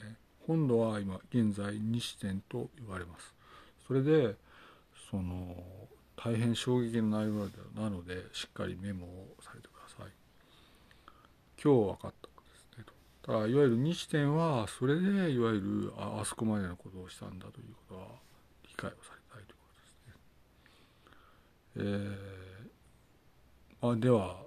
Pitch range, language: 95-125 Hz, Japanese